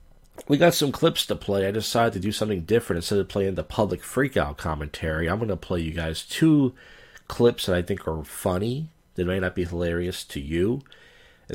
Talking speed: 205 wpm